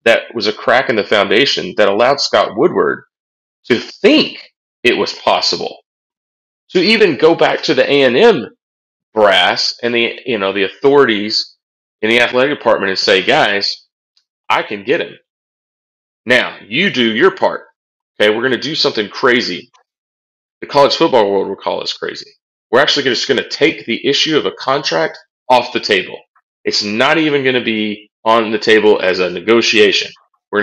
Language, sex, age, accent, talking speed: English, male, 30-49, American, 170 wpm